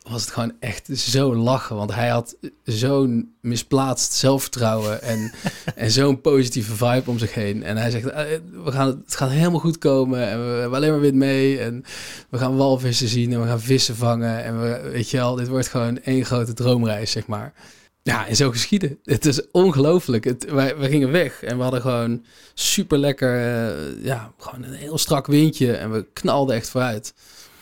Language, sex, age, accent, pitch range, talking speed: Dutch, male, 20-39, Dutch, 115-135 Hz, 190 wpm